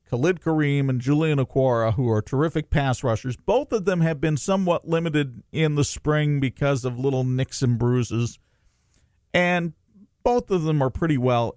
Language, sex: English, male